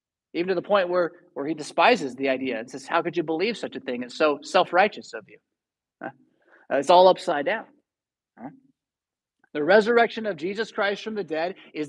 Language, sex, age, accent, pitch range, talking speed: English, male, 30-49, American, 150-220 Hz, 185 wpm